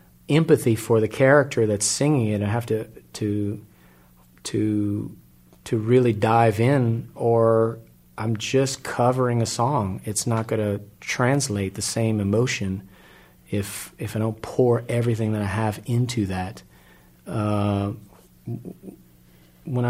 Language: English